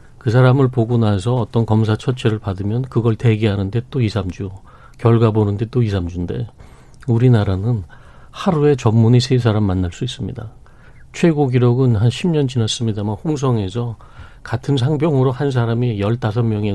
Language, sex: Korean, male